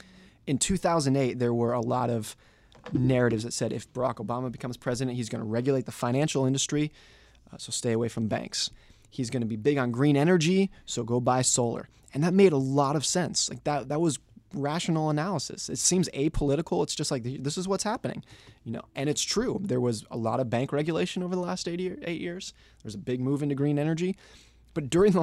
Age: 20-39